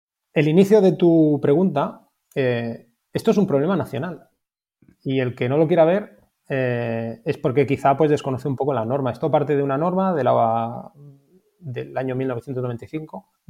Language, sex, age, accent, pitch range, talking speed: Spanish, male, 20-39, Spanish, 125-150 Hz, 170 wpm